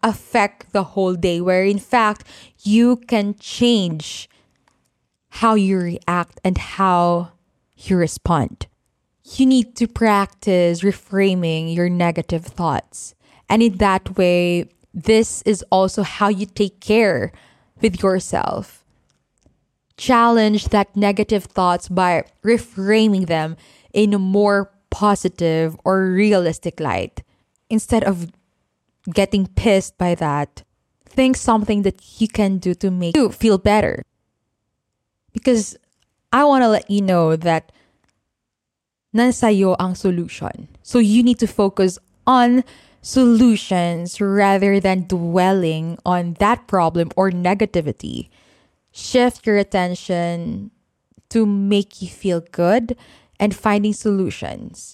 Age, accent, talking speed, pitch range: 20-39, Filipino, 115 wpm, 180-215 Hz